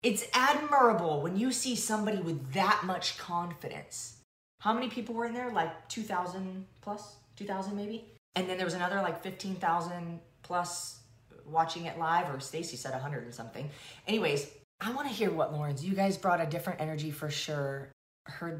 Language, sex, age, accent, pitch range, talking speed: English, female, 30-49, American, 160-220 Hz, 175 wpm